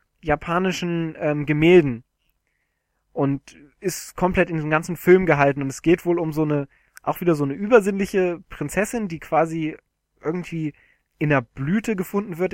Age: 20-39